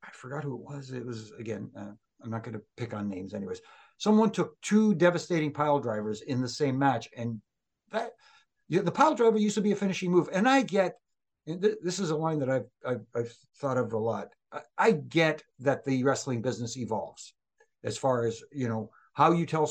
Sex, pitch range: male, 120-170 Hz